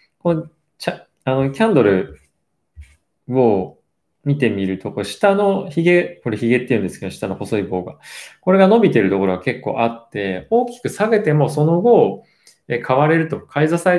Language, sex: Japanese, male